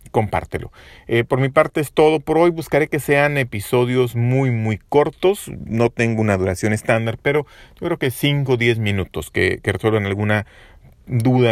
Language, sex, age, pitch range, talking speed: Spanish, male, 40-59, 100-130 Hz, 175 wpm